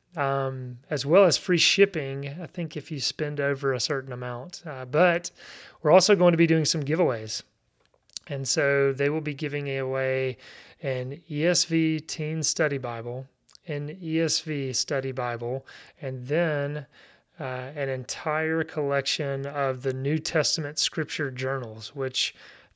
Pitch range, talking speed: 130-155 Hz, 145 wpm